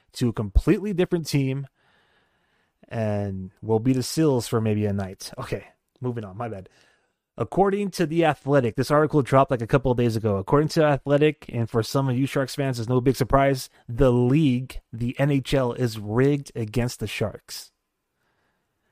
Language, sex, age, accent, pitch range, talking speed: English, male, 30-49, American, 110-140 Hz, 175 wpm